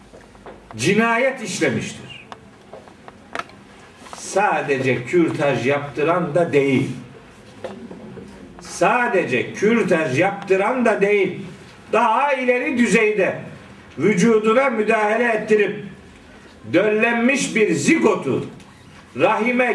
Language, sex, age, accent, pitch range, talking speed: Turkish, male, 50-69, native, 195-245 Hz, 65 wpm